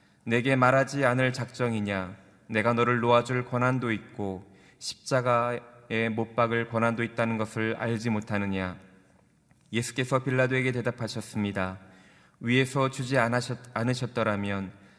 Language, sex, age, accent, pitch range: Korean, male, 20-39, native, 110-125 Hz